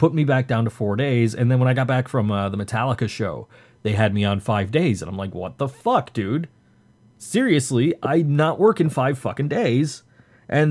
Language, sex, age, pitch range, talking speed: English, male, 30-49, 105-130 Hz, 225 wpm